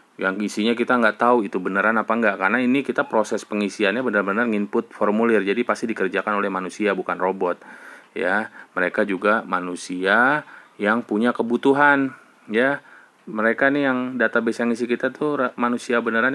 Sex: male